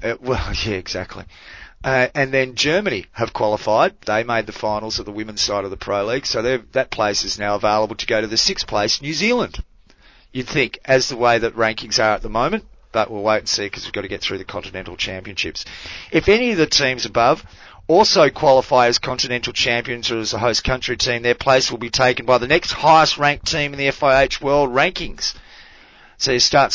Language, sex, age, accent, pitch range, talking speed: English, male, 40-59, Australian, 110-135 Hz, 220 wpm